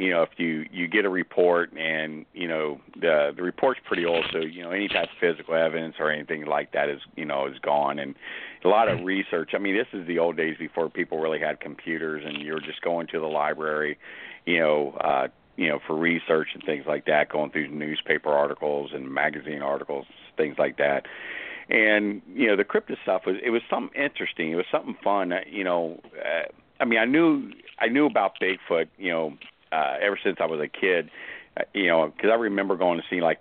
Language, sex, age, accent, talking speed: English, male, 50-69, American, 225 wpm